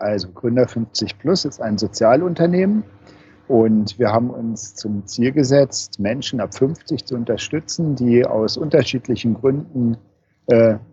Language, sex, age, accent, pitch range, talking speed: German, male, 50-69, German, 110-135 Hz, 130 wpm